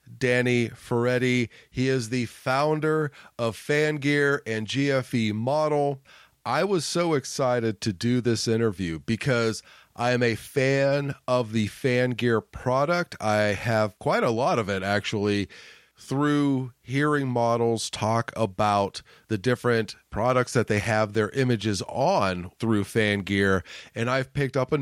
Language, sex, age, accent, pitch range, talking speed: English, male, 30-49, American, 110-130 Hz, 140 wpm